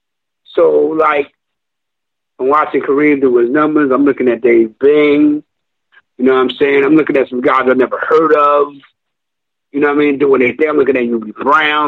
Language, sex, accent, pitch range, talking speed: English, male, American, 130-160 Hz, 200 wpm